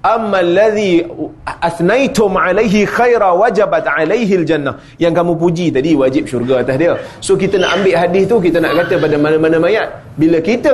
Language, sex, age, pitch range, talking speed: Malay, male, 30-49, 150-215 Hz, 170 wpm